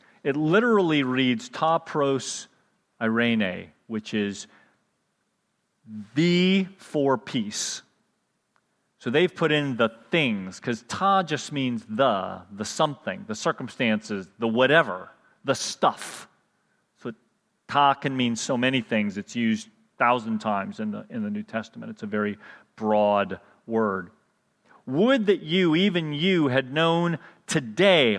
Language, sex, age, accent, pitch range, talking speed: English, male, 40-59, American, 120-195 Hz, 130 wpm